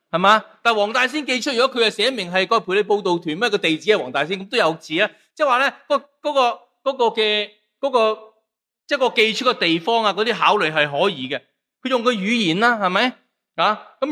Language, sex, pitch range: Chinese, male, 165-235 Hz